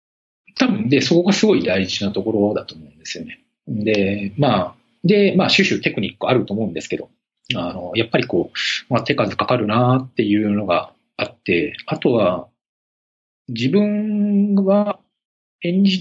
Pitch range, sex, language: 120-190 Hz, male, Japanese